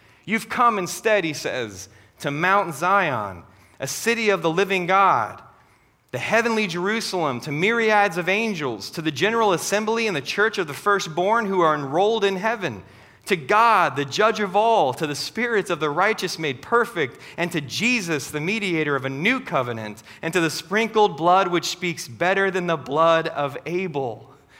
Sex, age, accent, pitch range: male, 30-49, American, 155-210 Hz